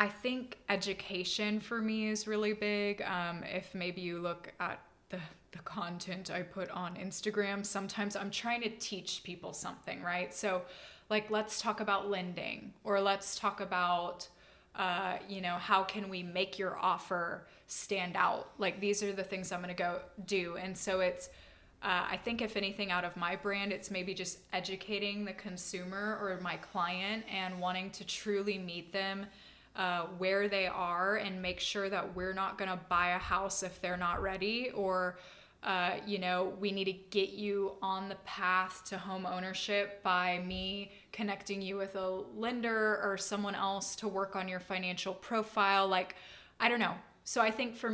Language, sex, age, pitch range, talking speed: English, female, 20-39, 185-205 Hz, 180 wpm